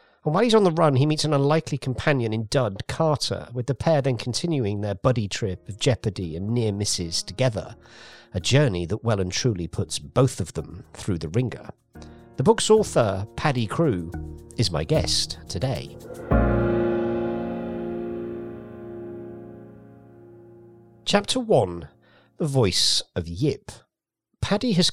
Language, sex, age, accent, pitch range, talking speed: English, male, 50-69, British, 105-135 Hz, 140 wpm